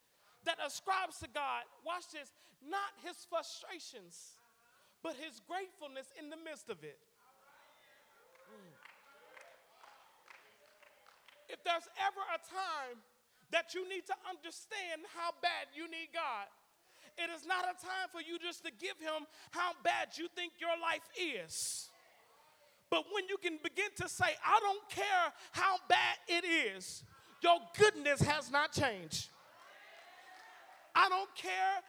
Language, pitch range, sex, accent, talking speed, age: English, 300-370 Hz, male, American, 135 wpm, 40-59